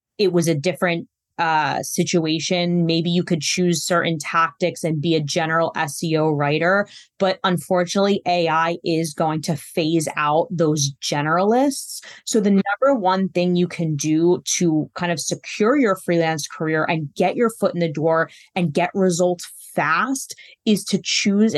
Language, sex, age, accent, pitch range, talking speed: English, female, 20-39, American, 170-205 Hz, 160 wpm